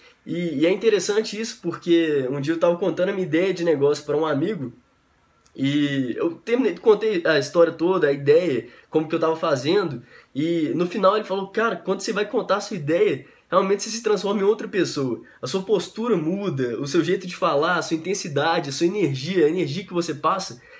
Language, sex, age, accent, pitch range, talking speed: Portuguese, male, 10-29, Brazilian, 165-220 Hz, 210 wpm